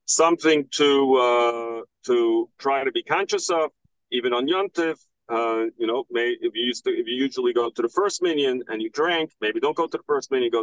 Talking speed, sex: 220 wpm, male